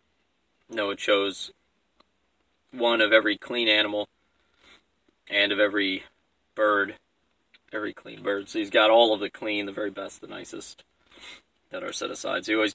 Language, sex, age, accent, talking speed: English, male, 30-49, American, 155 wpm